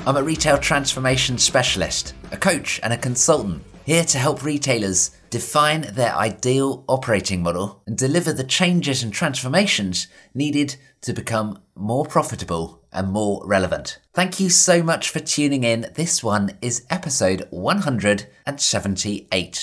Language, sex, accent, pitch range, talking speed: English, male, British, 105-150 Hz, 140 wpm